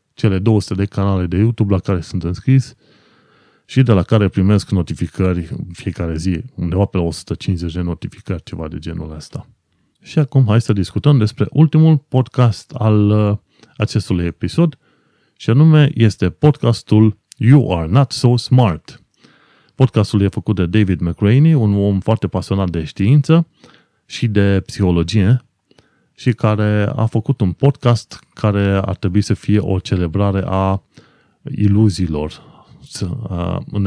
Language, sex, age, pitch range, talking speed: Romanian, male, 30-49, 90-115 Hz, 140 wpm